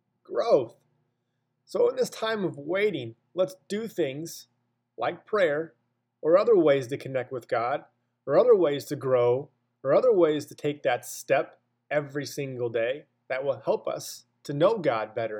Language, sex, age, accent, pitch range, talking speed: English, male, 30-49, American, 120-175 Hz, 165 wpm